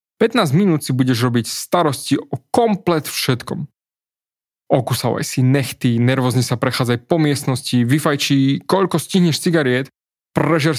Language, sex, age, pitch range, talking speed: Slovak, male, 20-39, 125-150 Hz, 120 wpm